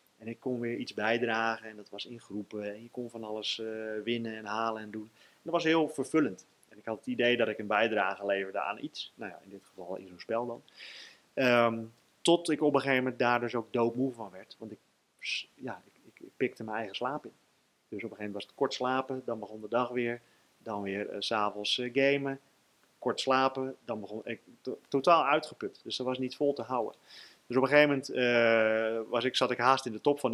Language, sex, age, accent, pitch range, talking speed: Dutch, male, 30-49, Dutch, 110-135 Hz, 225 wpm